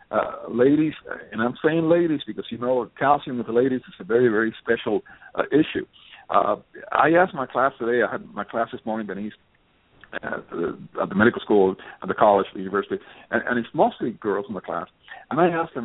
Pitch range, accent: 115-155 Hz, American